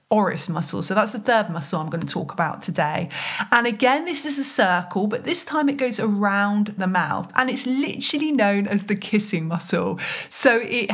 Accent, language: British, English